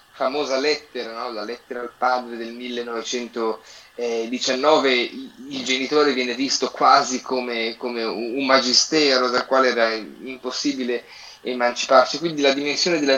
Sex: male